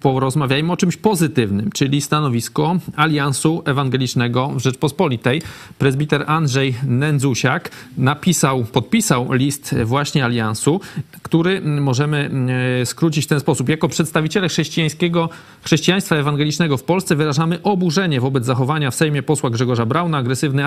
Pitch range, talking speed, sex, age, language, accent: 135-165 Hz, 120 wpm, male, 40-59, Polish, native